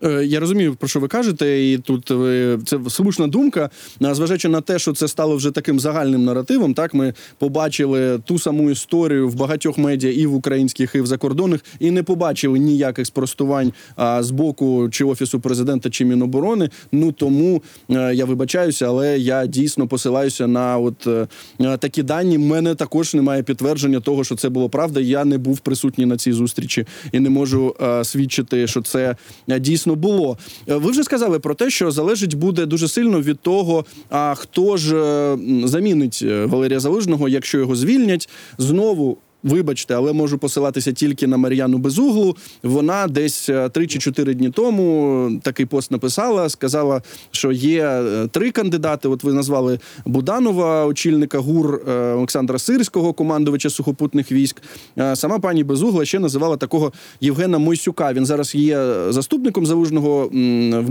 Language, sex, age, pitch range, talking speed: Ukrainian, male, 20-39, 130-160 Hz, 155 wpm